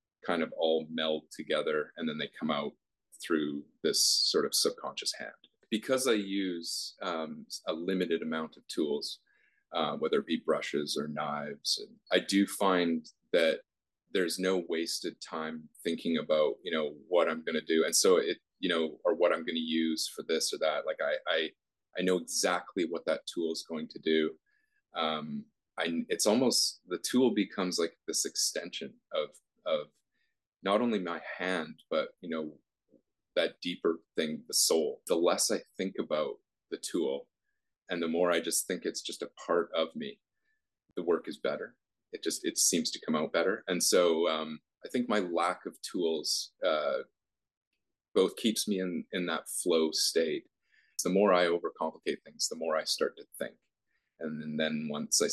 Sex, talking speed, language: male, 180 wpm, English